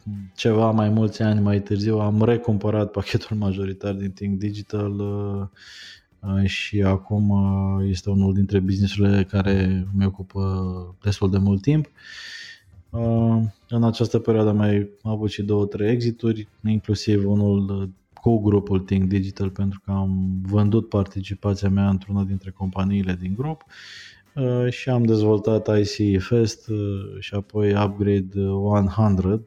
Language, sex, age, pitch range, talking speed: Romanian, male, 20-39, 100-110 Hz, 130 wpm